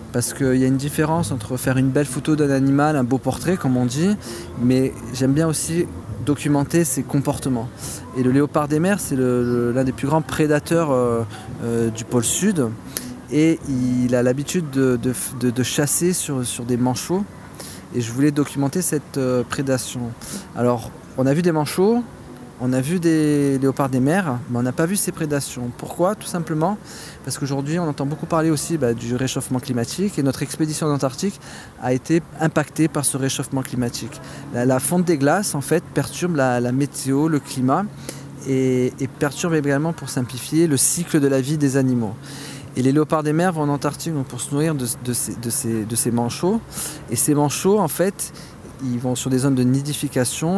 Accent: French